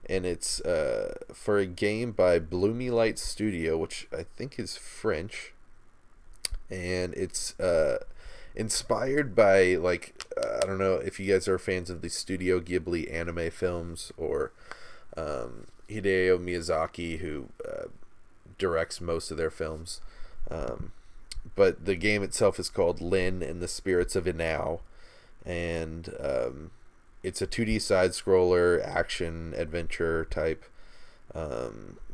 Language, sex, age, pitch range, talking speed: English, male, 20-39, 85-100 Hz, 125 wpm